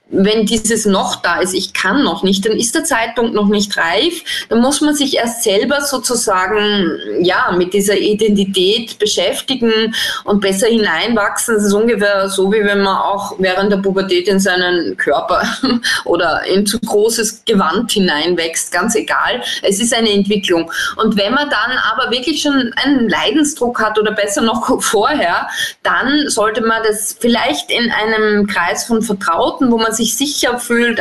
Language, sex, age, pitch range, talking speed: German, female, 20-39, 195-230 Hz, 170 wpm